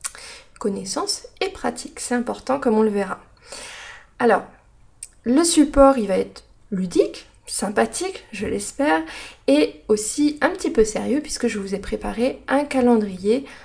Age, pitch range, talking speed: 20-39, 215-270 Hz, 140 wpm